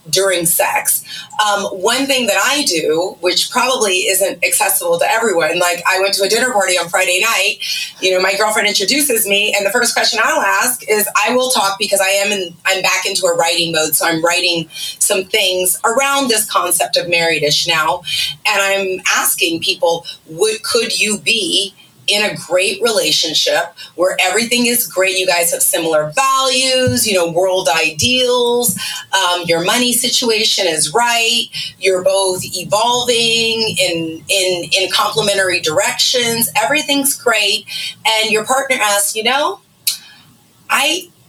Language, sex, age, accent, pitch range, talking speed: English, female, 30-49, American, 180-235 Hz, 160 wpm